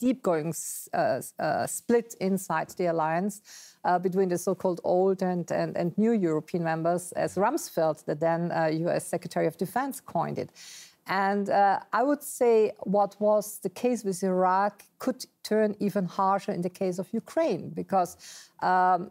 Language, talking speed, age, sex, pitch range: English, 165 wpm, 50-69, female, 175-205 Hz